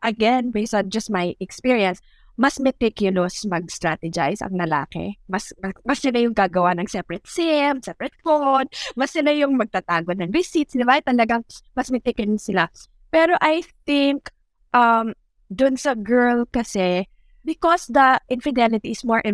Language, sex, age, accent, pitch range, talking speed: English, female, 20-39, Filipino, 200-285 Hz, 140 wpm